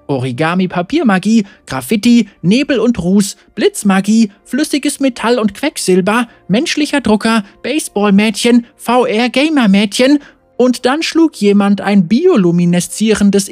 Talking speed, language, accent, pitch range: 90 wpm, German, German, 165-235 Hz